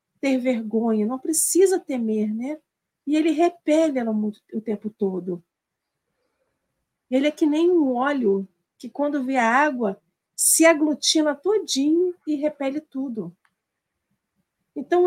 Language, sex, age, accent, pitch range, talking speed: Portuguese, female, 50-69, Brazilian, 215-330 Hz, 125 wpm